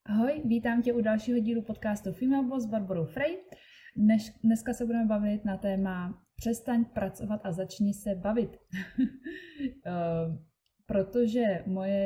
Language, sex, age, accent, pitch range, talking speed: Czech, female, 20-39, native, 165-200 Hz, 130 wpm